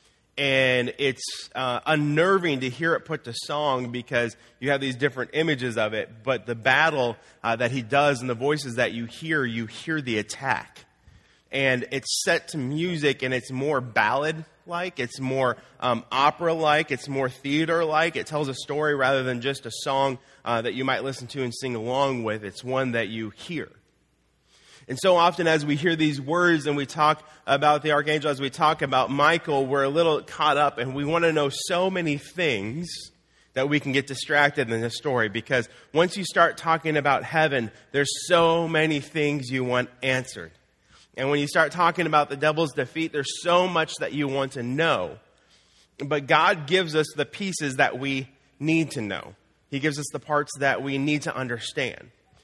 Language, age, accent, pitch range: English, 30-49, American, 130-155 Hz